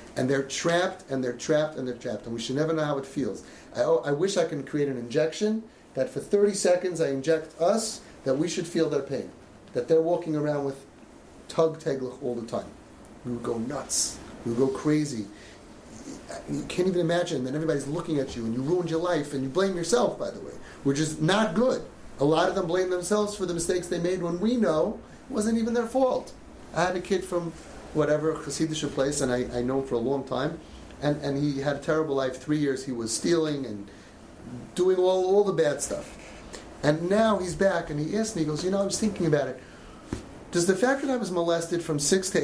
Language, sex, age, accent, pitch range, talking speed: English, male, 30-49, American, 135-180 Hz, 230 wpm